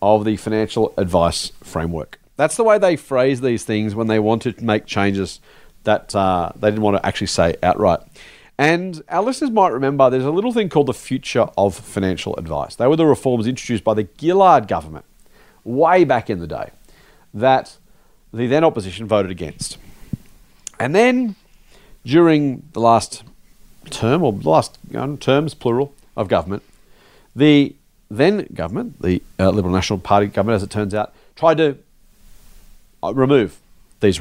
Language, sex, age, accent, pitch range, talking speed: English, male, 40-59, Australian, 100-150 Hz, 165 wpm